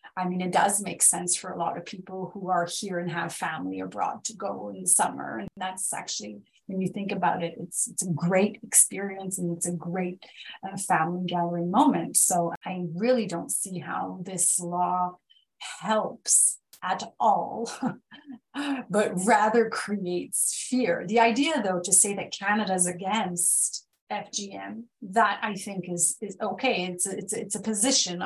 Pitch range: 180-215 Hz